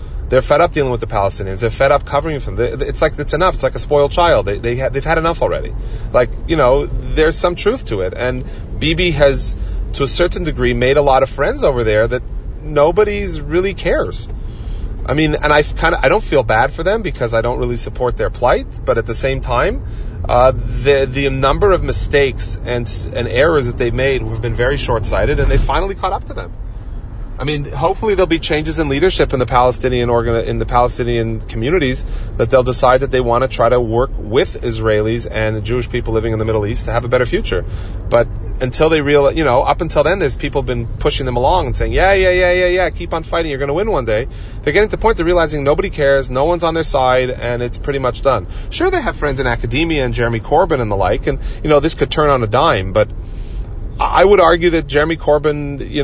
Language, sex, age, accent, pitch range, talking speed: English, male, 30-49, American, 115-150 Hz, 240 wpm